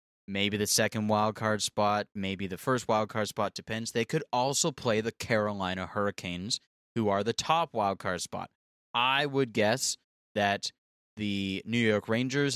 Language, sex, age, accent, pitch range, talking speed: English, male, 20-39, American, 100-120 Hz, 165 wpm